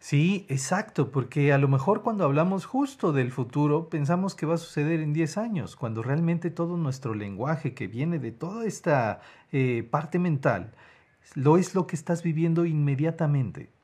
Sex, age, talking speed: male, 50-69, 170 wpm